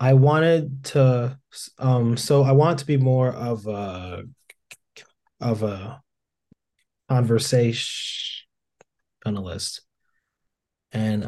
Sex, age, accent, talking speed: male, 20-39, American, 90 wpm